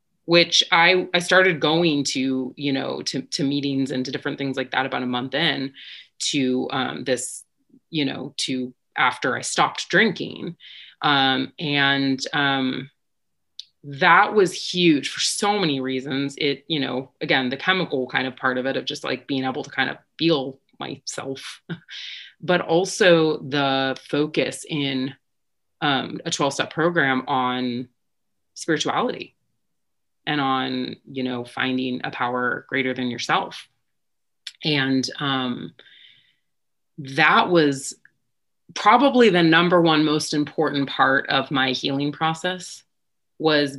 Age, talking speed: 30-49, 135 wpm